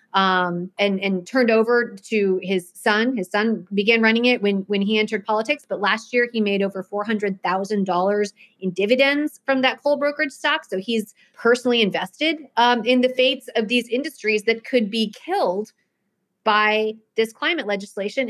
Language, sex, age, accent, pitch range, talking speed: English, female, 30-49, American, 200-250 Hz, 175 wpm